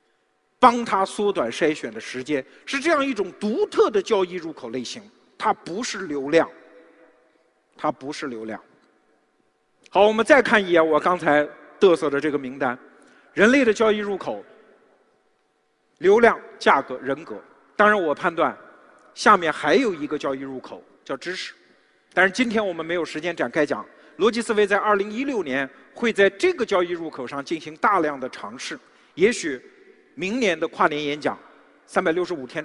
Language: Chinese